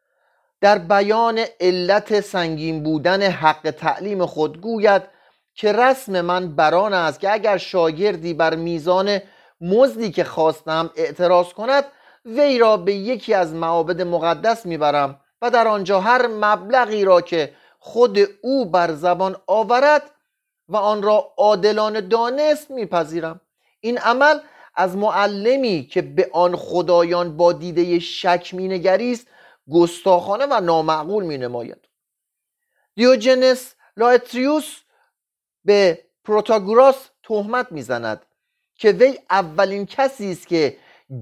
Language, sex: Persian, male